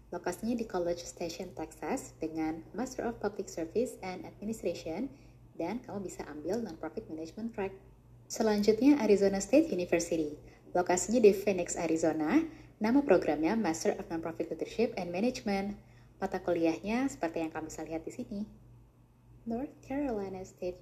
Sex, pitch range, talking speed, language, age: female, 160-225 Hz, 135 wpm, Indonesian, 20-39